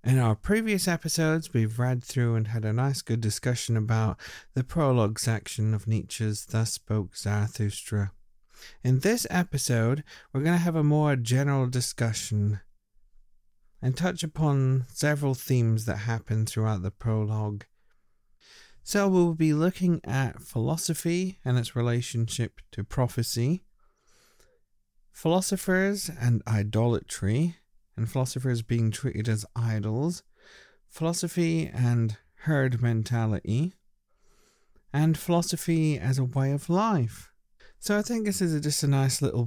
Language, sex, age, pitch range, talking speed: English, male, 40-59, 110-145 Hz, 125 wpm